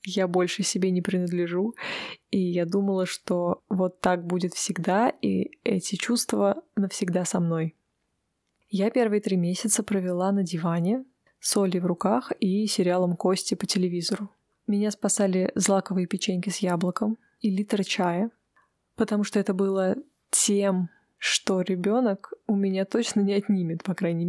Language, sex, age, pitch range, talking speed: Russian, female, 20-39, 180-210 Hz, 140 wpm